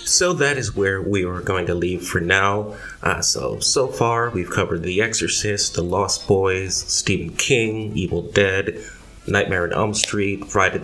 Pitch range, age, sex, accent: 95-115 Hz, 30-49, male, American